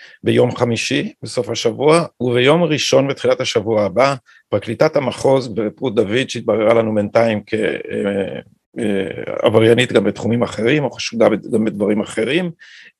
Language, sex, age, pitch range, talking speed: Hebrew, male, 50-69, 120-160 Hz, 115 wpm